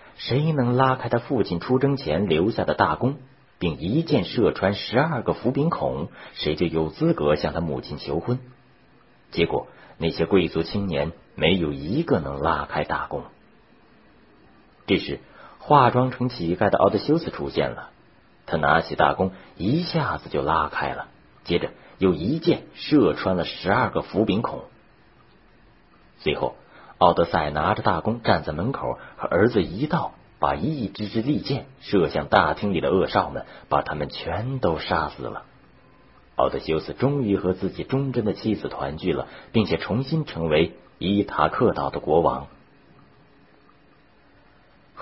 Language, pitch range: Chinese, 85-135 Hz